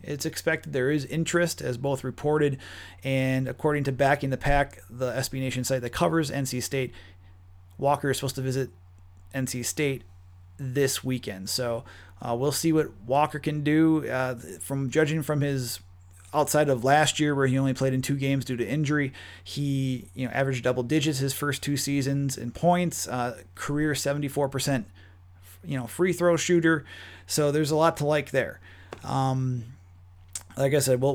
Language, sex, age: English, male, 30-49